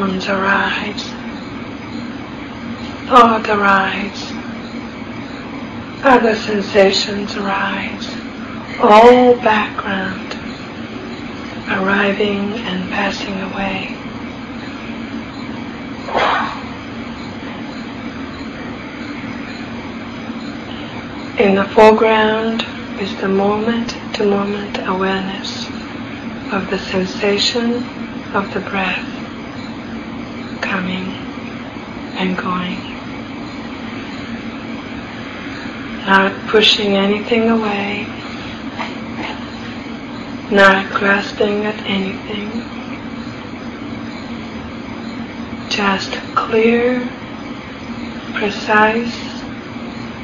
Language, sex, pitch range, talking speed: English, female, 215-260 Hz, 45 wpm